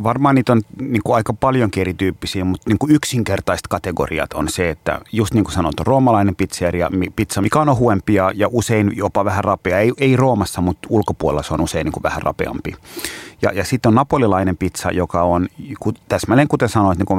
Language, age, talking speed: Finnish, 30-49, 205 wpm